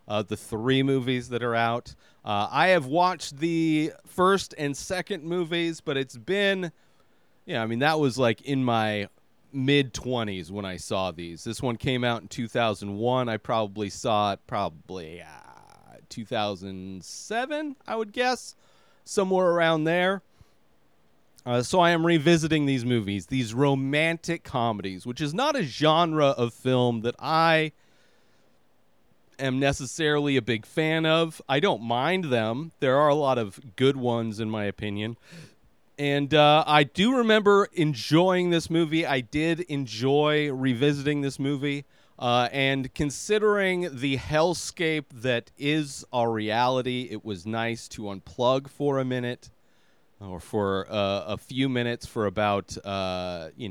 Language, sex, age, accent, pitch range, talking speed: English, male, 30-49, American, 115-155 Hz, 145 wpm